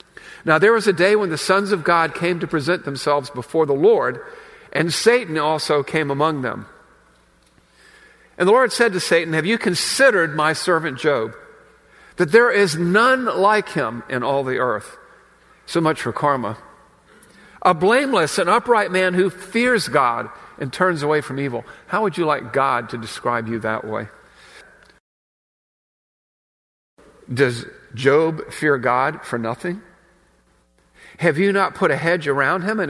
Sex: male